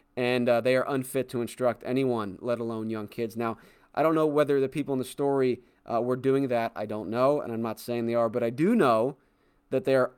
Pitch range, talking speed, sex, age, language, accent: 115-140 Hz, 250 wpm, male, 30-49, English, American